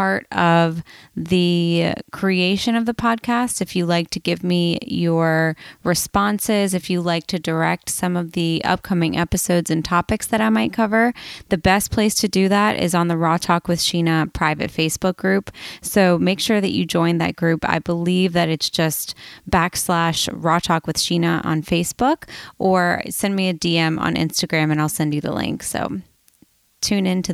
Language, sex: English, female